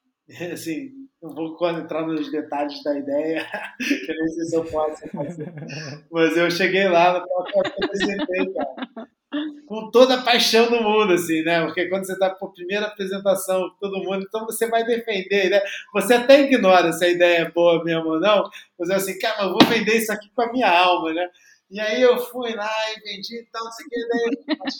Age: 20-39